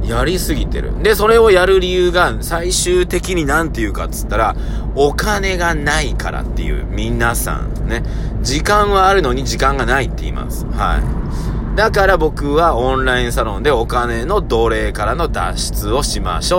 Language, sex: Japanese, male